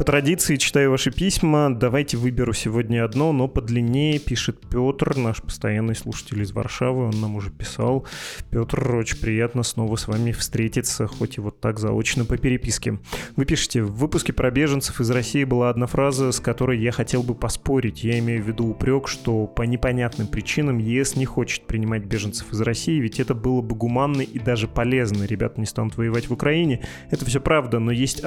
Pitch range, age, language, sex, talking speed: 115-135 Hz, 20-39, Russian, male, 185 wpm